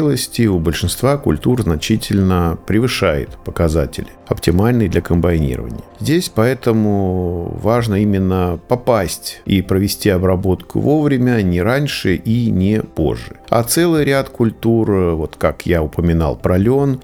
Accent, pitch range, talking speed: native, 90-120 Hz, 115 wpm